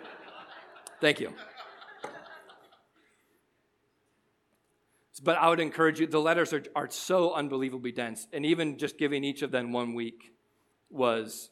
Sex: male